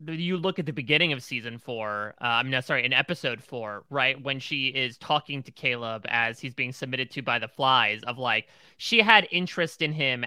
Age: 30-49